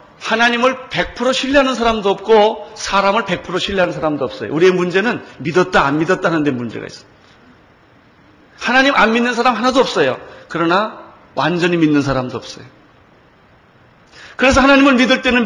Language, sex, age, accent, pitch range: Korean, male, 40-59, native, 145-215 Hz